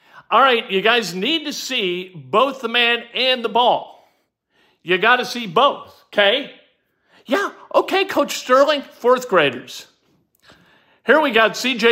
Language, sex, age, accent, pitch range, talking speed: English, male, 50-69, American, 165-250 Hz, 145 wpm